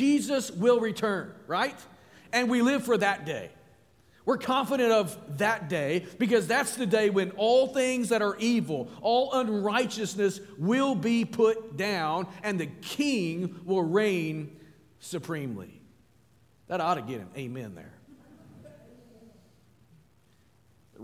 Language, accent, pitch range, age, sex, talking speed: English, American, 180-245 Hz, 40-59, male, 130 wpm